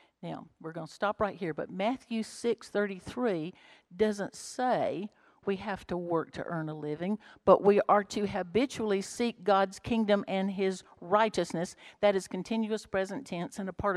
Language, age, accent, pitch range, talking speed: English, 60-79, American, 165-205 Hz, 170 wpm